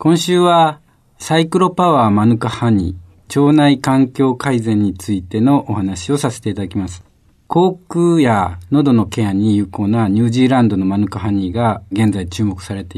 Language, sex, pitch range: Japanese, male, 100-135 Hz